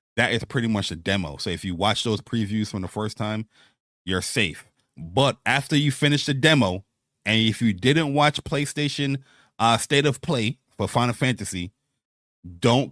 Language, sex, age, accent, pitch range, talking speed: English, male, 30-49, American, 100-130 Hz, 175 wpm